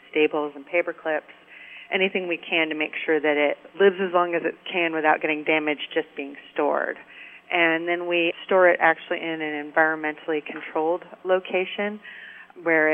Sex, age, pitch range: female, 40-59, 150-170 Hz